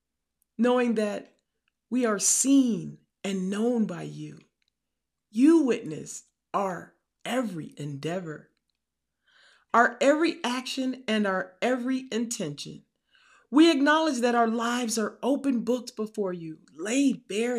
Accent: American